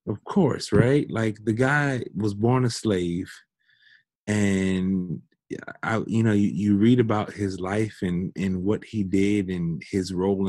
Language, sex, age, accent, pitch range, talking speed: English, male, 30-49, American, 90-105 Hz, 160 wpm